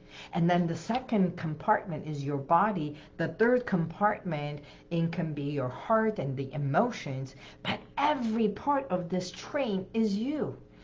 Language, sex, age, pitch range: English, female, 60-79, 150-220 Hz